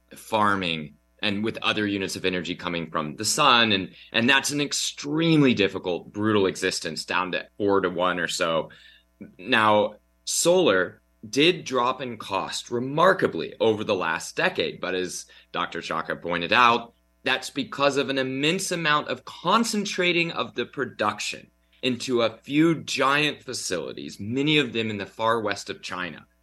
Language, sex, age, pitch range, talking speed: English, male, 30-49, 95-130 Hz, 155 wpm